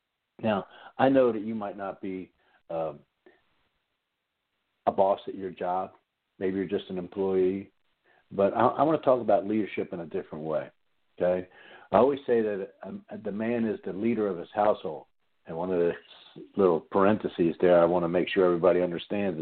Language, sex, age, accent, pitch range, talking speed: English, male, 60-79, American, 90-115 Hz, 180 wpm